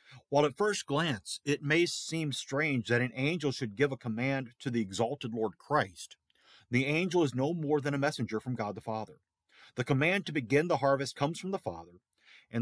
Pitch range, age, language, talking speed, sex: 115-145 Hz, 40-59, English, 205 wpm, male